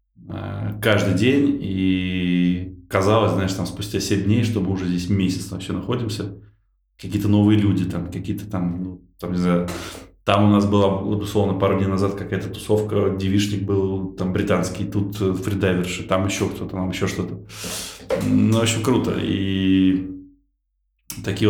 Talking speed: 145 wpm